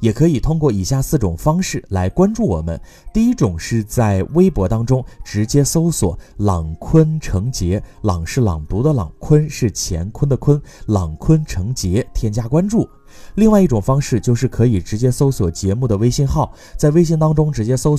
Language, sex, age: Chinese, male, 30-49